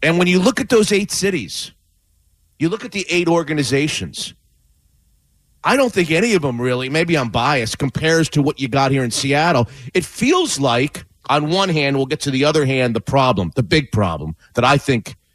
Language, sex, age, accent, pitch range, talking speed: English, male, 40-59, American, 130-170 Hz, 205 wpm